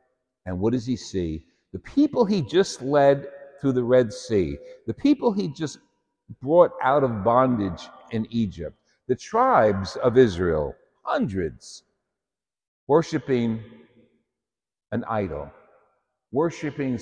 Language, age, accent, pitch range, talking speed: English, 60-79, American, 95-140 Hz, 115 wpm